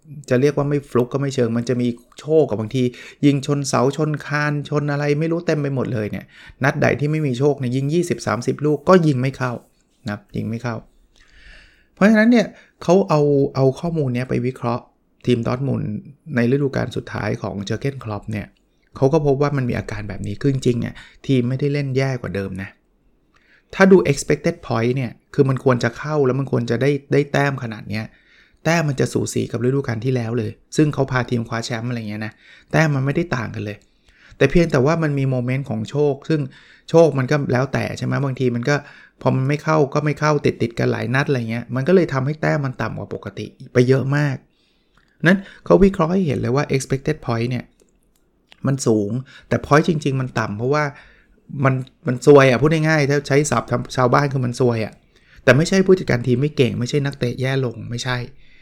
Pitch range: 120-145 Hz